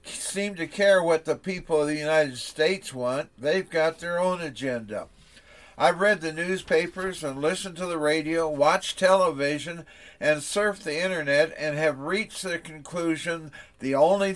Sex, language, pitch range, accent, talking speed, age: male, English, 150-175 Hz, American, 160 wpm, 60-79